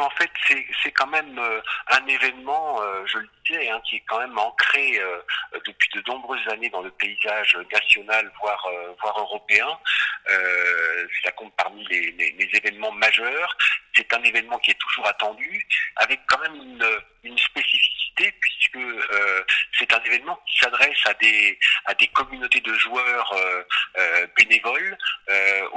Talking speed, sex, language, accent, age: 170 wpm, male, French, French, 50-69